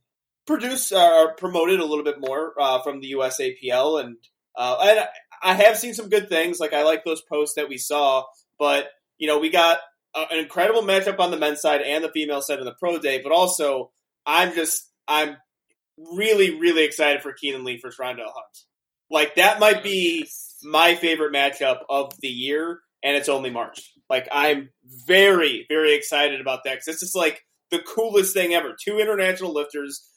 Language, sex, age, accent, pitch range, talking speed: English, male, 30-49, American, 145-180 Hz, 195 wpm